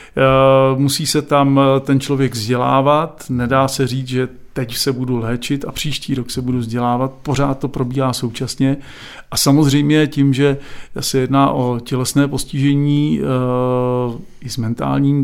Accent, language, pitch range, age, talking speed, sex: native, Czech, 125-145 Hz, 40-59, 140 wpm, male